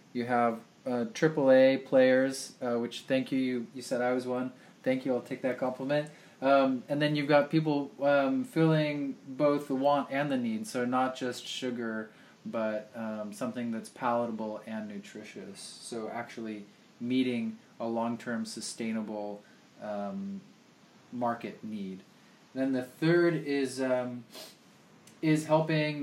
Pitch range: 115-145 Hz